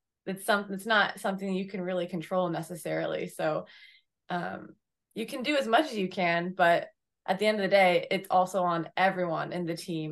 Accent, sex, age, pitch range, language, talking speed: American, female, 20-39, 170-195 Hz, English, 200 wpm